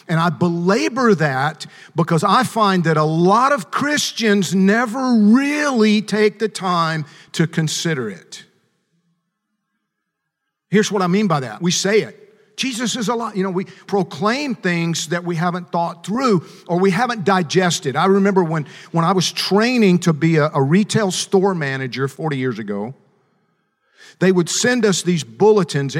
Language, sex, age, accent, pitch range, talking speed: English, male, 50-69, American, 155-200 Hz, 160 wpm